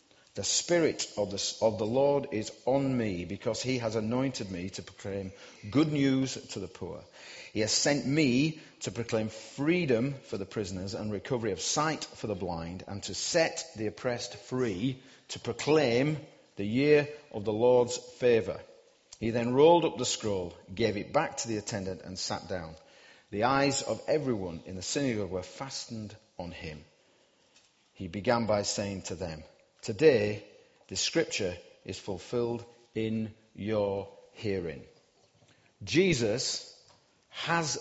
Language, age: English, 40-59